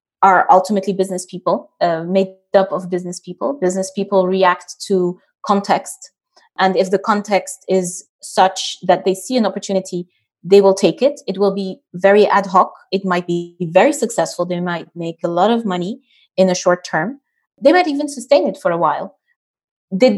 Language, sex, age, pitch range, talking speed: English, female, 20-39, 185-220 Hz, 180 wpm